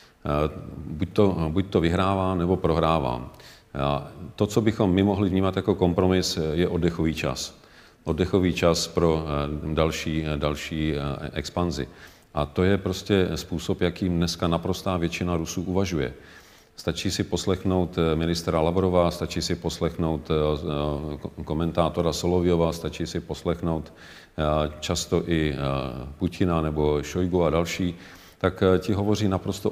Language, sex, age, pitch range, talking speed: Czech, male, 40-59, 80-90 Hz, 120 wpm